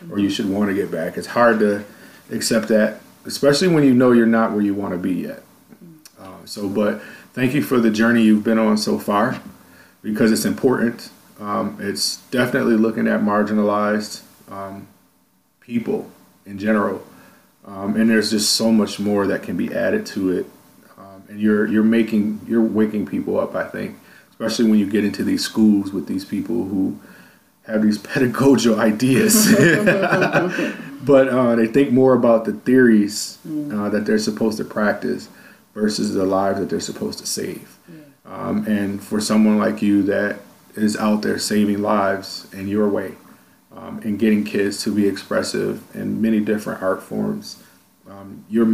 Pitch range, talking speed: 105-120 Hz, 170 wpm